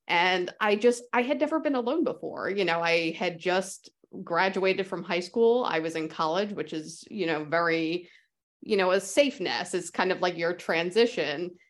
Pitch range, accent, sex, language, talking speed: 160-195 Hz, American, female, English, 190 wpm